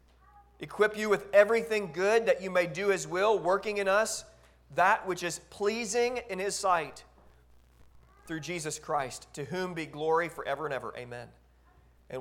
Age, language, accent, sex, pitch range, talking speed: 40-59, English, American, male, 120-190 Hz, 160 wpm